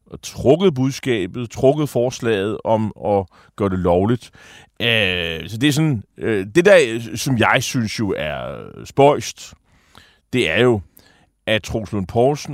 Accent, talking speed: native, 145 wpm